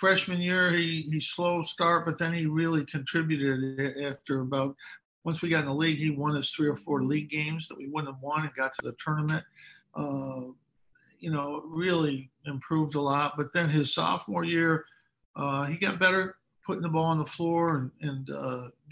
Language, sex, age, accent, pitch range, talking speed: English, male, 50-69, American, 135-155 Hz, 195 wpm